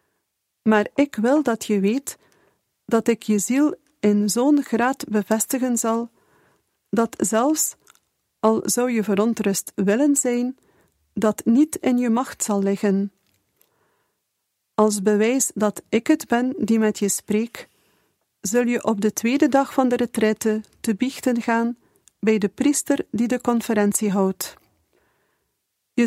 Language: Dutch